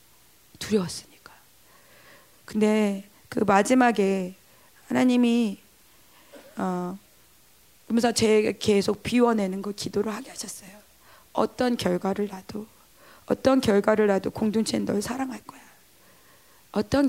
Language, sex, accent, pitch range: Korean, female, native, 195-240 Hz